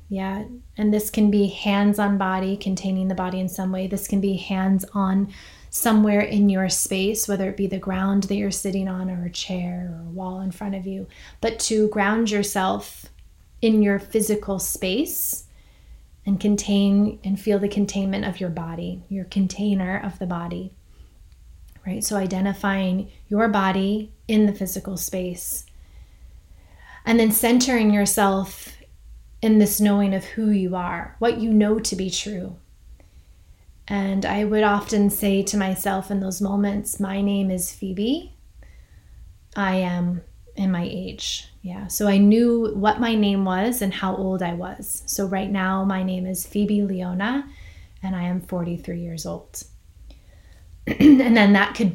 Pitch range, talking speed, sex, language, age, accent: 180-205 Hz, 160 wpm, female, English, 20-39, American